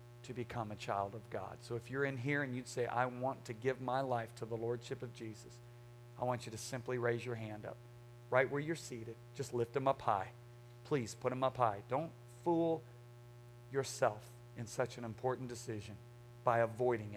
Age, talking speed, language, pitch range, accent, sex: 40-59, 205 wpm, English, 120-130 Hz, American, male